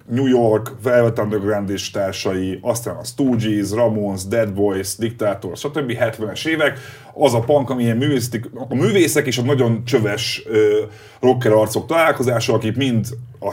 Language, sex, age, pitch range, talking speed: Hungarian, male, 30-49, 105-130 Hz, 140 wpm